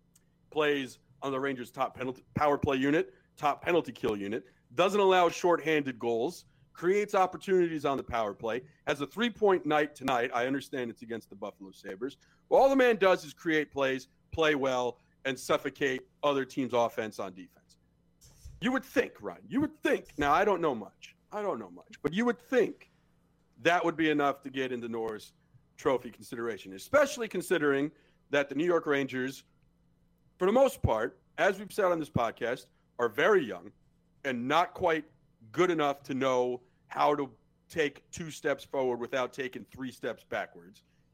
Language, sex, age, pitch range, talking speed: English, male, 50-69, 130-180 Hz, 175 wpm